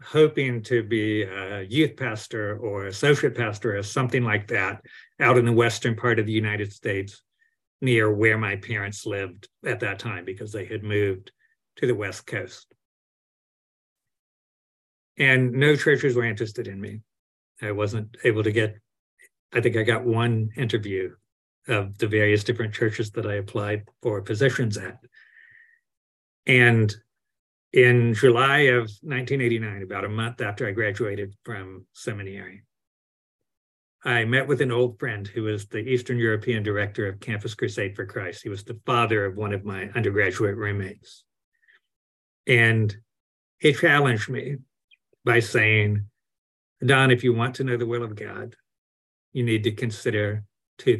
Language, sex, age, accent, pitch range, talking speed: English, male, 50-69, American, 105-125 Hz, 150 wpm